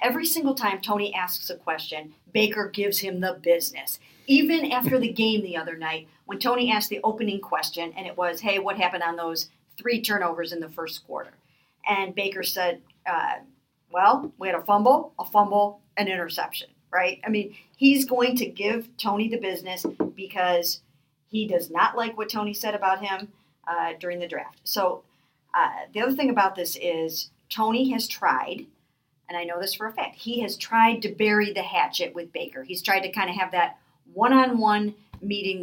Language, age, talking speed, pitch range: English, 50-69, 190 wpm, 175-235 Hz